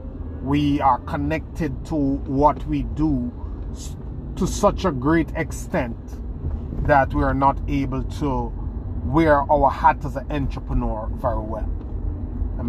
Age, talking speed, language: 30-49, 130 wpm, English